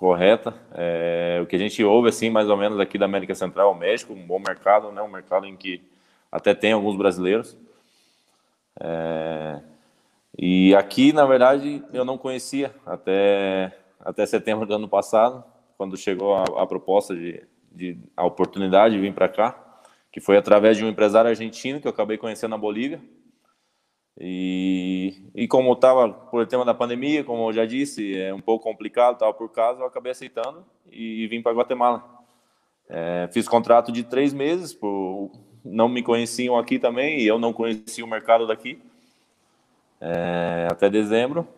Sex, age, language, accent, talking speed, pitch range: male, 20-39, Portuguese, Brazilian, 170 wpm, 95-120 Hz